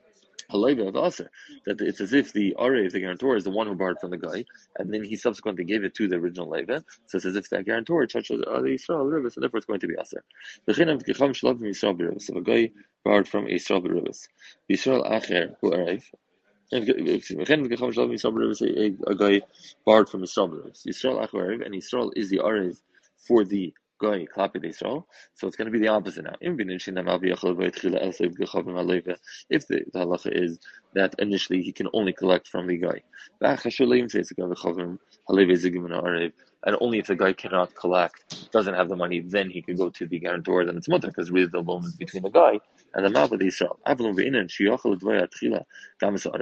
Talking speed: 180 wpm